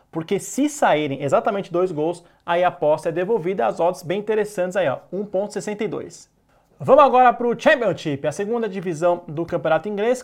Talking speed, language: 170 wpm, Portuguese